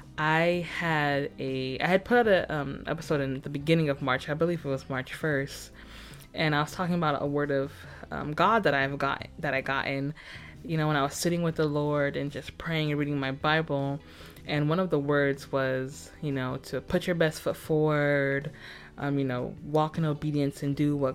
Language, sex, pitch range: English, female, 135-160 Hz